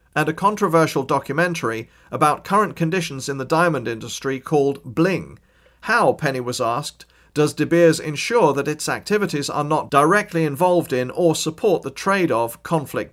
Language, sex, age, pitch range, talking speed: English, male, 40-59, 135-170 Hz, 160 wpm